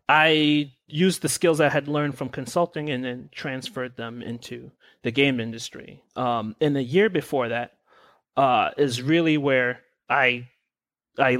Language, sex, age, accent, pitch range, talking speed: English, male, 30-49, American, 125-160 Hz, 155 wpm